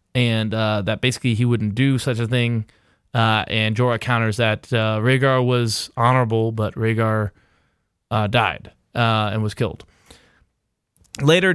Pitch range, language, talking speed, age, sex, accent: 115-145 Hz, English, 145 wpm, 20-39, male, American